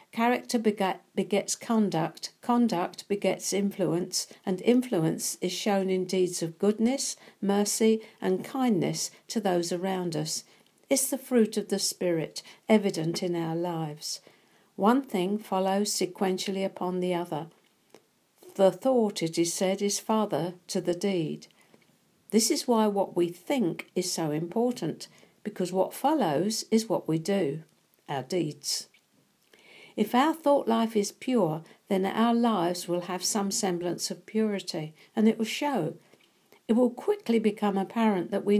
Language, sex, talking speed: English, female, 145 wpm